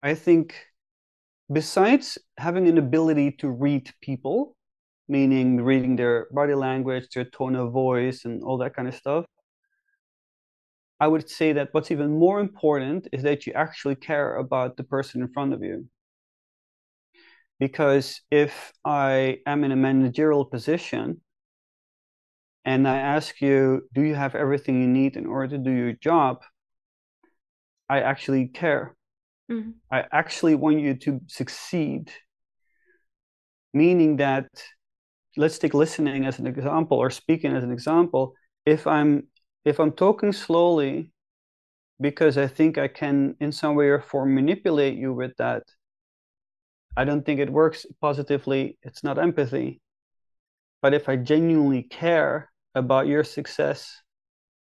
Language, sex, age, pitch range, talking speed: English, male, 30-49, 130-155 Hz, 140 wpm